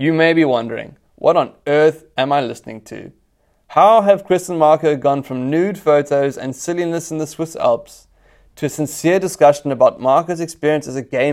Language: English